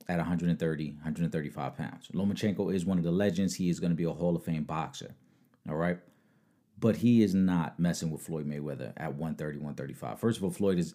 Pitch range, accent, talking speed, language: 85-105 Hz, American, 205 wpm, English